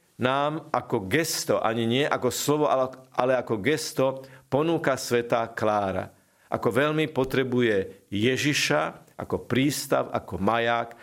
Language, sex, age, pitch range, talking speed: Slovak, male, 50-69, 115-135 Hz, 115 wpm